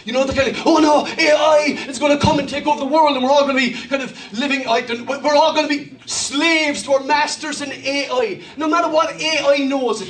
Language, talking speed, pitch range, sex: English, 275 wpm, 190-280 Hz, male